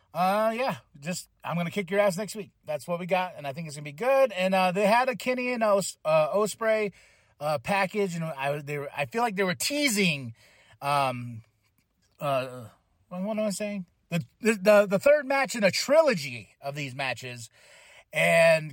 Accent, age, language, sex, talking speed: American, 30-49, English, male, 205 wpm